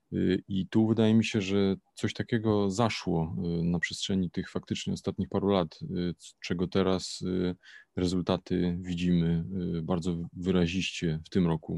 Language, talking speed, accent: Polish, 125 wpm, native